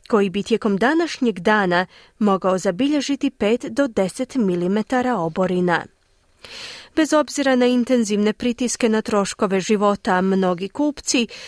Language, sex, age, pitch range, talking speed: Croatian, female, 30-49, 185-255 Hz, 115 wpm